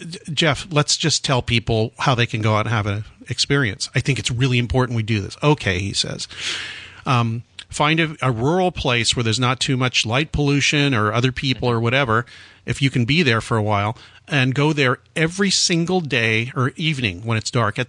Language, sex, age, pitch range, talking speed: English, male, 40-59, 110-145 Hz, 210 wpm